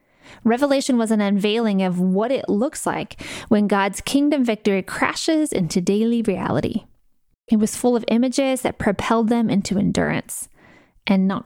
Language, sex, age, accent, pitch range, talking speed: English, female, 20-39, American, 200-250 Hz, 150 wpm